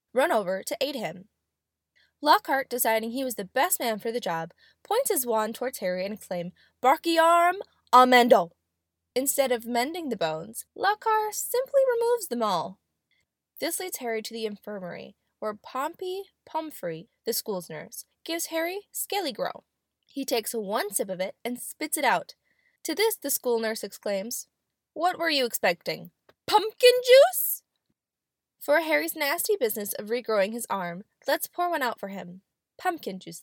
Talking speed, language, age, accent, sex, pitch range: 160 wpm, English, 10-29, American, female, 210-330 Hz